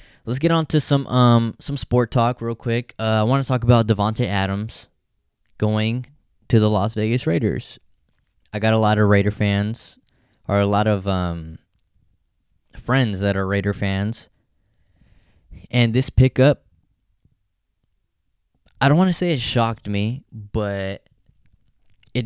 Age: 10-29